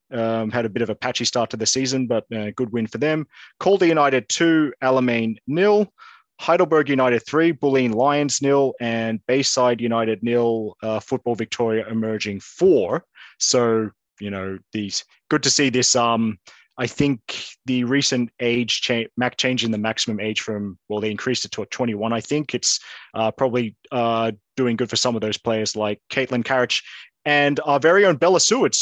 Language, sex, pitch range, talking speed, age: English, male, 115-145 Hz, 185 wpm, 30-49